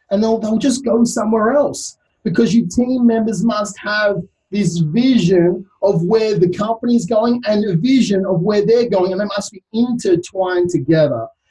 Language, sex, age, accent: English, male, 30-49, Australian